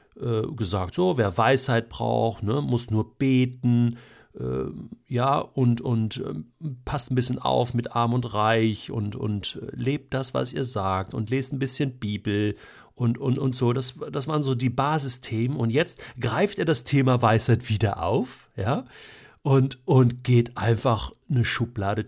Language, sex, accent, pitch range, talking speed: German, male, German, 120-155 Hz, 165 wpm